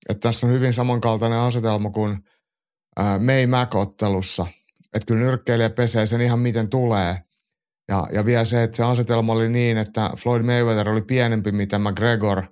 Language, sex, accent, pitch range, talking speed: Finnish, male, native, 100-125 Hz, 165 wpm